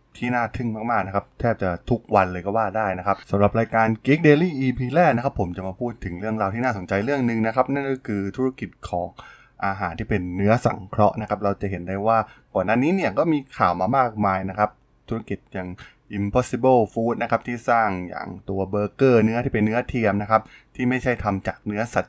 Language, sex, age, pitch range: Thai, male, 20-39, 95-120 Hz